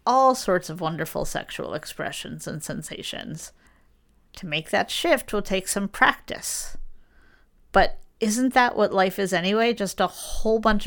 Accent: American